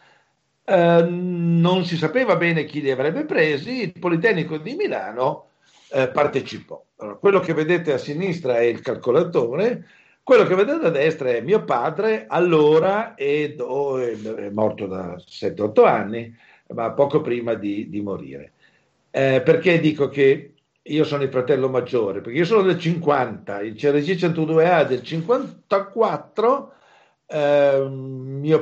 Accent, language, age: native, Italian, 60-79